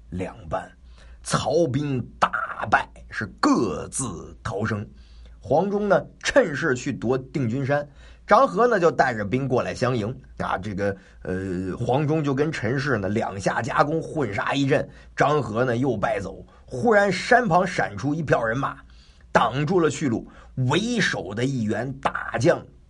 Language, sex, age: Chinese, male, 50-69